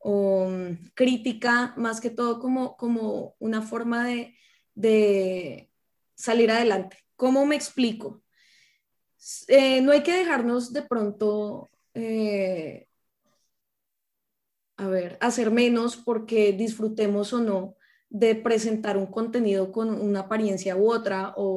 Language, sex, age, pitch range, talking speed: Spanish, female, 20-39, 205-240 Hz, 115 wpm